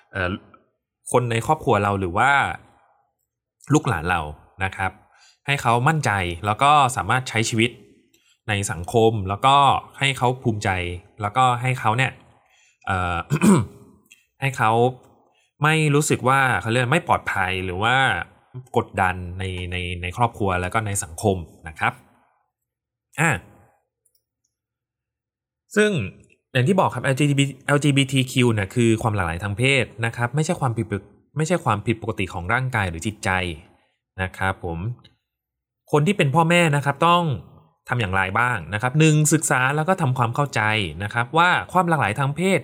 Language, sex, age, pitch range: Thai, male, 20-39, 100-140 Hz